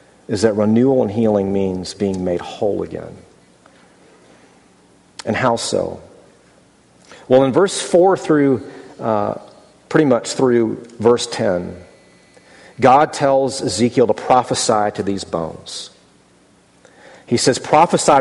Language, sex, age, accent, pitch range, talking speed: English, male, 40-59, American, 105-135 Hz, 115 wpm